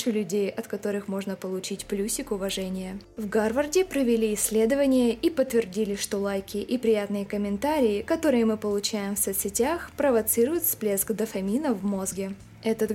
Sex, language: female, Russian